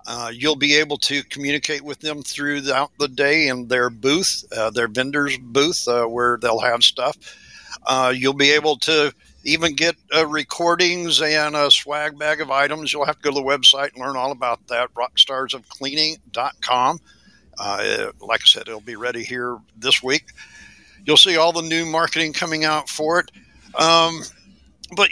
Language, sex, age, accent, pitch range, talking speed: English, male, 60-79, American, 130-160 Hz, 170 wpm